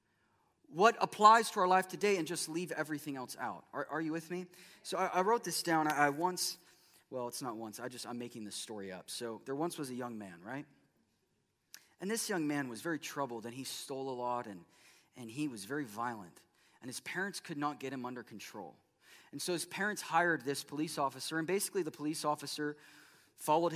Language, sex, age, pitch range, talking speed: English, male, 20-39, 135-170 Hz, 215 wpm